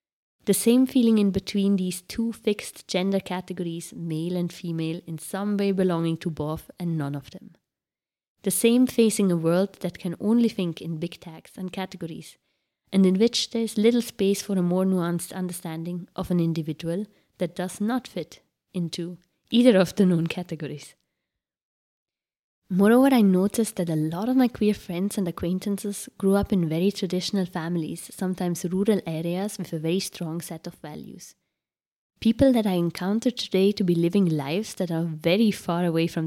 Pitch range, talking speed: 170-200 Hz, 175 wpm